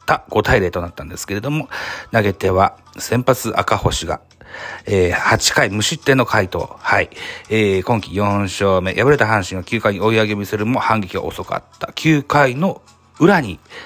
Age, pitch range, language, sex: 40-59, 100-130 Hz, Japanese, male